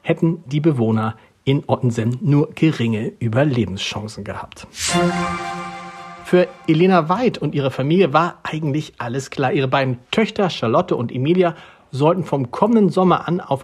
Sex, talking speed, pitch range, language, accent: male, 135 wpm, 125-170 Hz, German, German